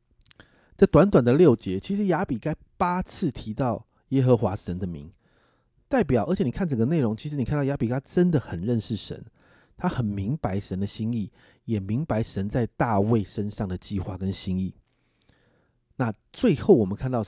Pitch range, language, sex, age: 105-150 Hz, Chinese, male, 30-49